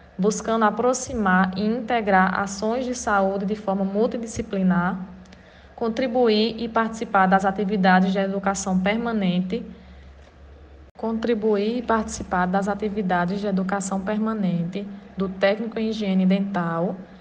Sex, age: female, 20-39